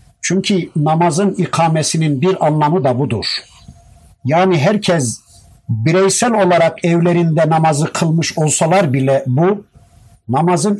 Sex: male